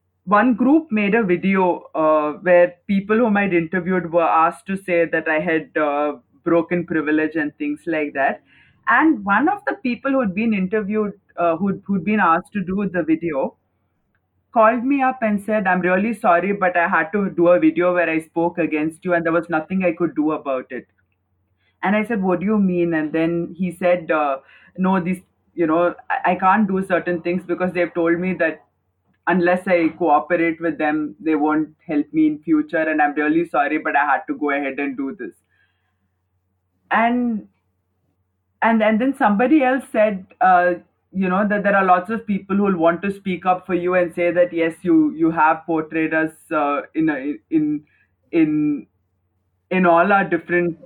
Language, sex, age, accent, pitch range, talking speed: English, female, 20-39, Indian, 155-200 Hz, 195 wpm